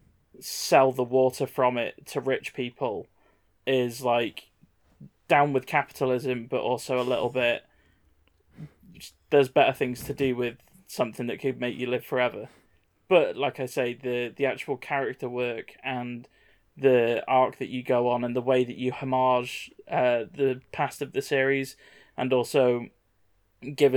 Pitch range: 120-135 Hz